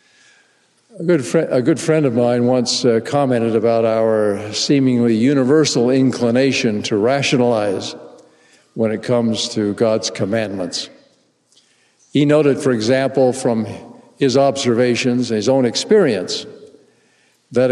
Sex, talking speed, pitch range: male, 120 wpm, 110-135 Hz